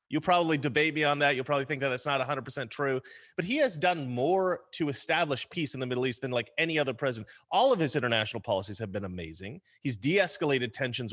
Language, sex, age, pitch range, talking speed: English, male, 30-49, 130-175 Hz, 225 wpm